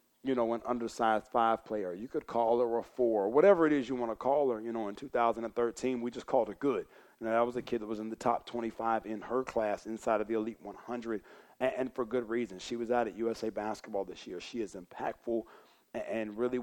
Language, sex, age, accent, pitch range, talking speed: English, male, 40-59, American, 110-125 Hz, 245 wpm